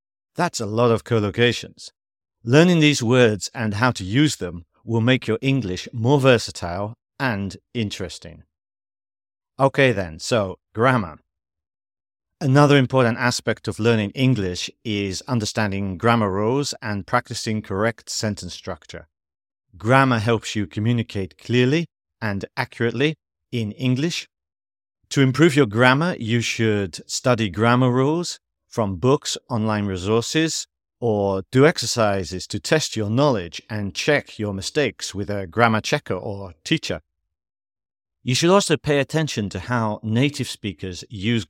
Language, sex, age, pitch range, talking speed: English, male, 50-69, 100-130 Hz, 130 wpm